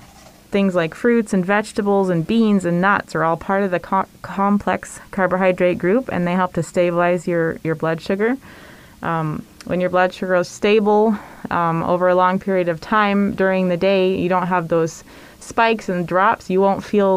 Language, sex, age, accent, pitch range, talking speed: English, female, 20-39, American, 165-195 Hz, 185 wpm